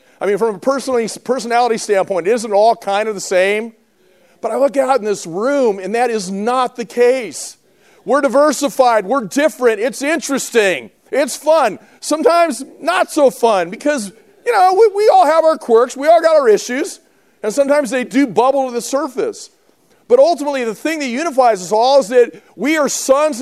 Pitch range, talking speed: 185-275 Hz, 185 wpm